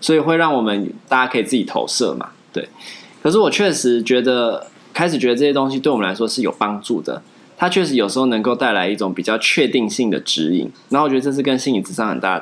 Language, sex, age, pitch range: Chinese, male, 20-39, 105-135 Hz